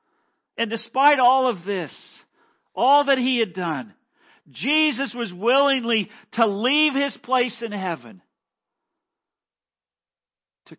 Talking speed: 110 wpm